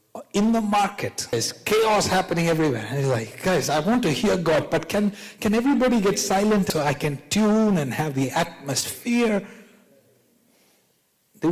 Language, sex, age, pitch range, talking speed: English, male, 60-79, 110-180 Hz, 150 wpm